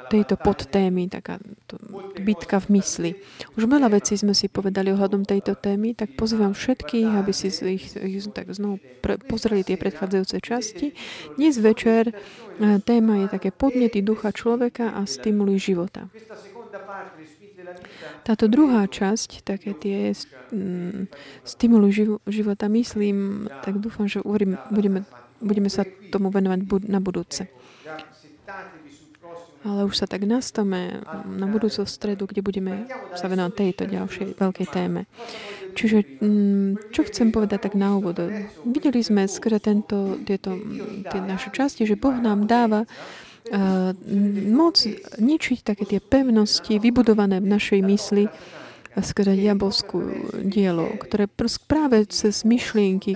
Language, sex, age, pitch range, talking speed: Slovak, female, 30-49, 195-220 Hz, 125 wpm